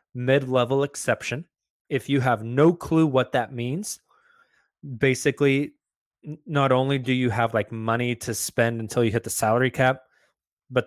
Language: English